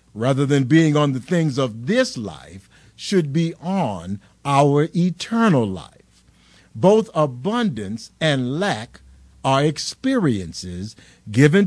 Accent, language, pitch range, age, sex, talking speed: American, English, 115-170 Hz, 50-69, male, 115 wpm